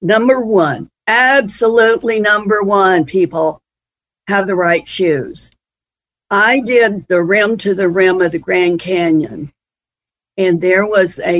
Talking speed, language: 130 wpm, English